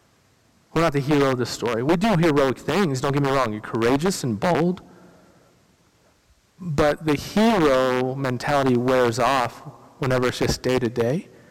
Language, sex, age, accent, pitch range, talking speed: English, male, 40-59, American, 140-205 Hz, 160 wpm